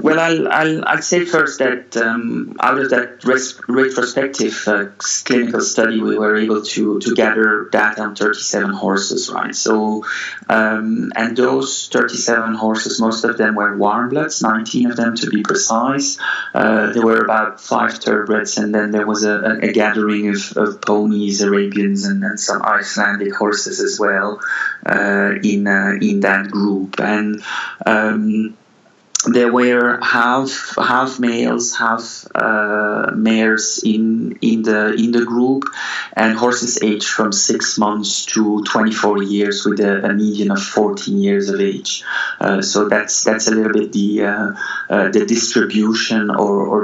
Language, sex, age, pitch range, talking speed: English, male, 30-49, 105-120 Hz, 160 wpm